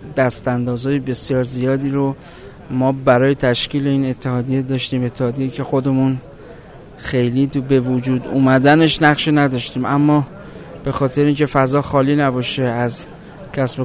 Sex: male